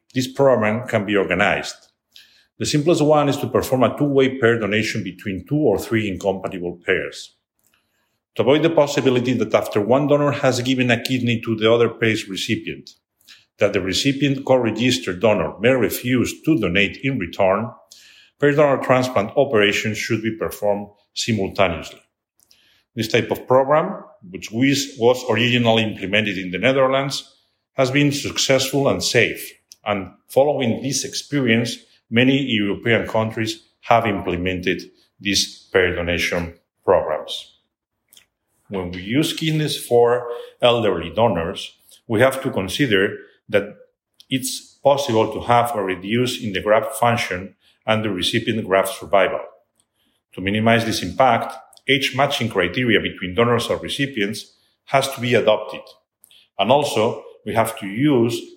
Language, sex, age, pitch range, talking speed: English, male, 50-69, 105-135 Hz, 135 wpm